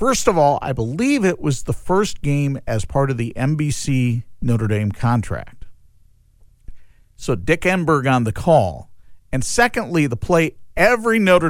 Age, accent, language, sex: 50-69, American, English, male